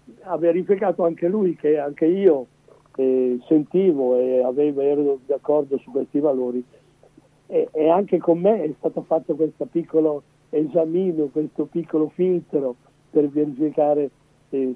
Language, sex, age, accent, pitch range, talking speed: Italian, male, 60-79, native, 140-160 Hz, 135 wpm